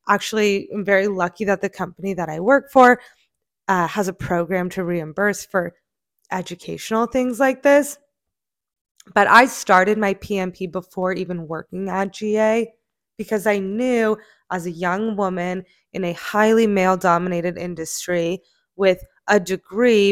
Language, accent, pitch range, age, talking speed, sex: English, American, 185-235 Hz, 20-39, 140 wpm, female